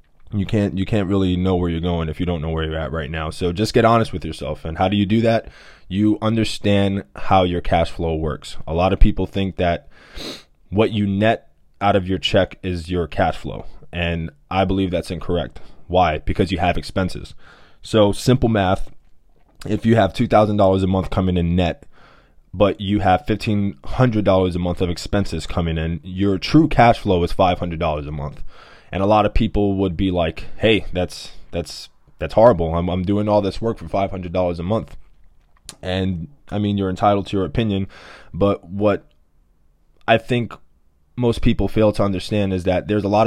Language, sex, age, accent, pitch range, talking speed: English, male, 20-39, American, 85-105 Hz, 195 wpm